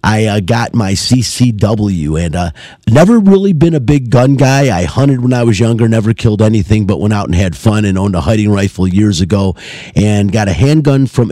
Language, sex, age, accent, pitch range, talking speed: English, male, 40-59, American, 95-115 Hz, 215 wpm